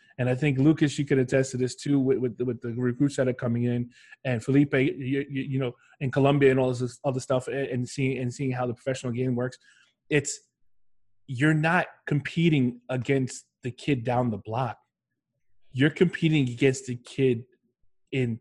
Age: 20-39